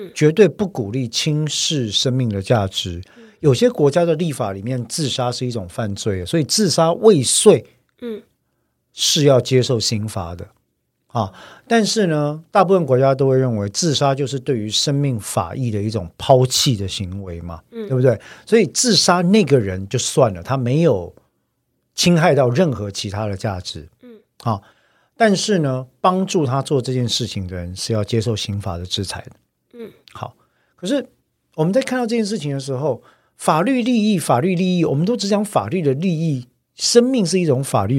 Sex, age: male, 50-69